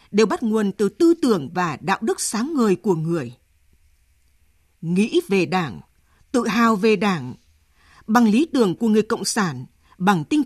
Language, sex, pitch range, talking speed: Vietnamese, female, 170-240 Hz, 165 wpm